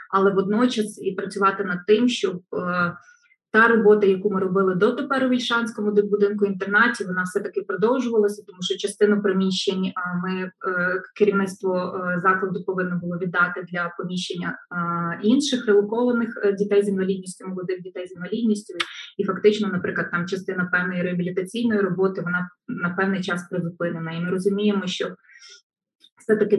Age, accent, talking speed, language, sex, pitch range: 20-39, native, 145 wpm, Ukrainian, female, 180-220 Hz